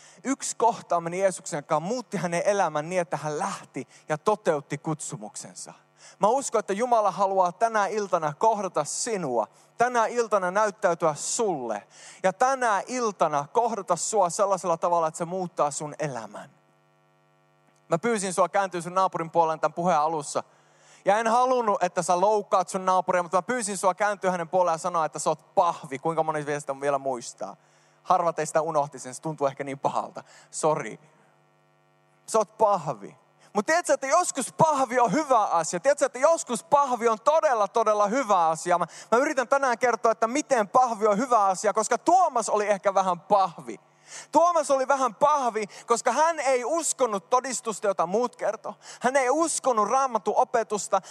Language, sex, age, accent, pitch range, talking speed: Finnish, male, 20-39, native, 165-240 Hz, 160 wpm